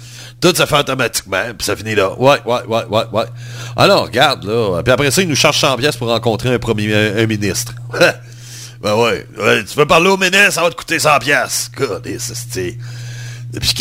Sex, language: male, French